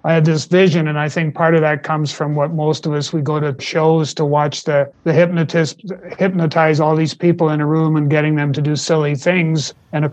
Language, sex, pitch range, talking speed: English, male, 145-165 Hz, 245 wpm